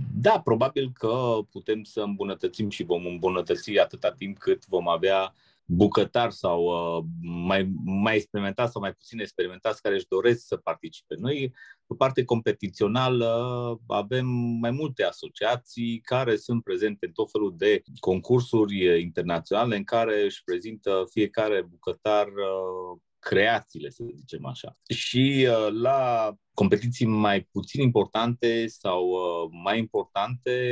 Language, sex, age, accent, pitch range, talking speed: Romanian, male, 30-49, native, 100-125 Hz, 130 wpm